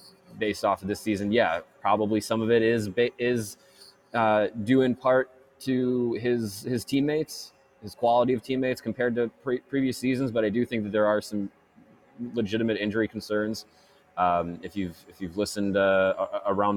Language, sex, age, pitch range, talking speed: English, male, 20-39, 95-115 Hz, 170 wpm